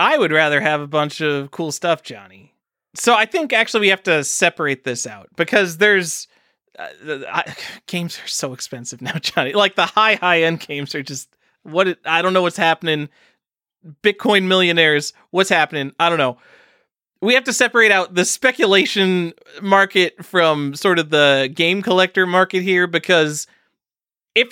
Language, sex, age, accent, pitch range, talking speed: English, male, 30-49, American, 140-190 Hz, 170 wpm